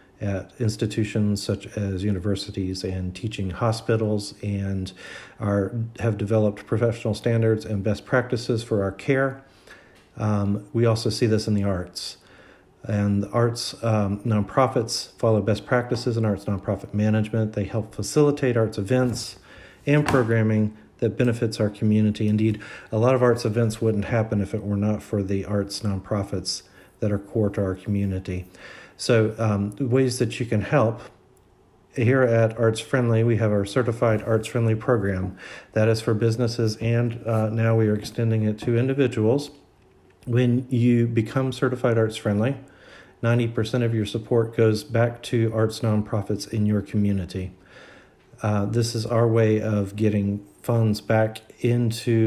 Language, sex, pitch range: English, male, 100-115 Hz